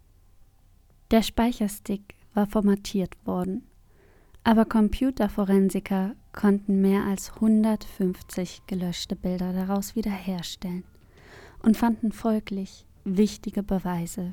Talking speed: 85 wpm